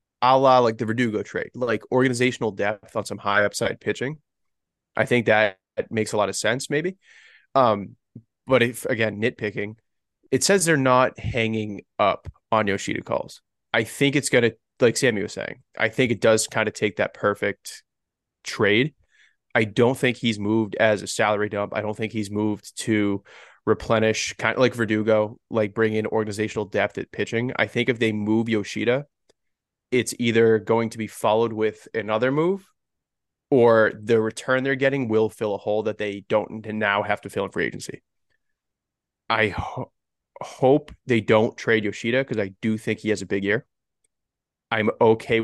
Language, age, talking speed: English, 20-39, 175 wpm